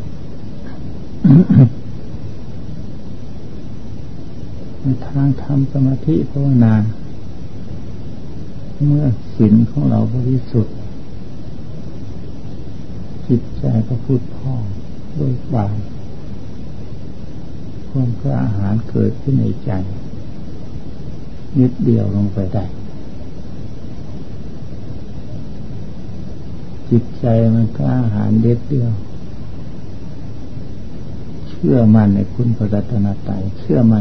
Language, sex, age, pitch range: Thai, male, 60-79, 105-125 Hz